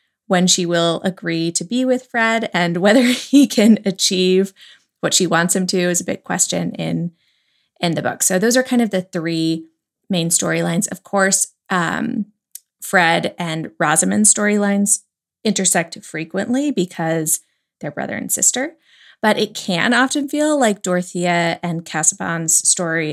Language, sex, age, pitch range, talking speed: English, female, 20-39, 170-210 Hz, 155 wpm